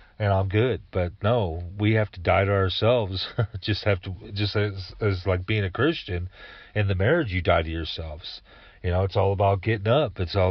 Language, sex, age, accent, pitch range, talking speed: English, male, 40-59, American, 90-105 Hz, 210 wpm